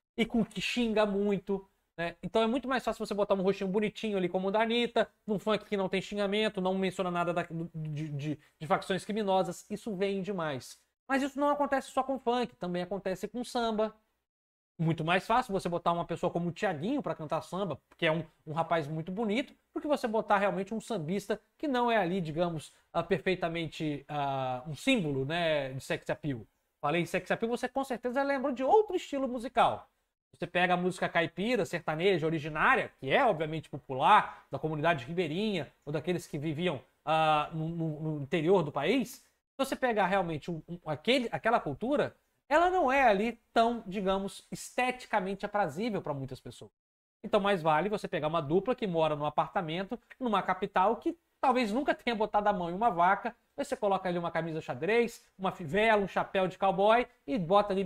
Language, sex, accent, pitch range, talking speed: Portuguese, male, Brazilian, 165-225 Hz, 190 wpm